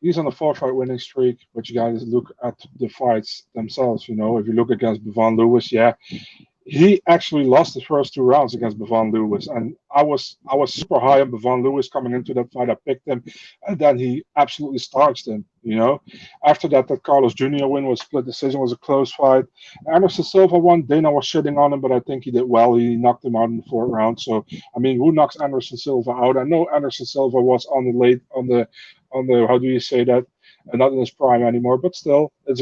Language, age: English, 30-49